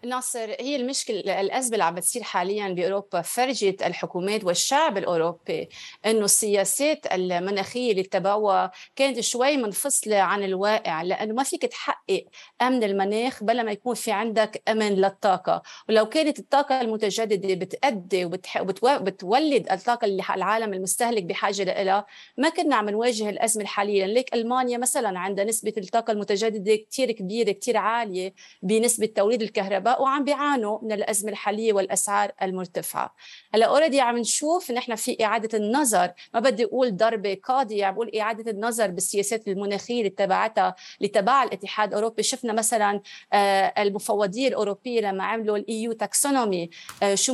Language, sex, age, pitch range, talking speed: Arabic, female, 30-49, 200-240 Hz, 135 wpm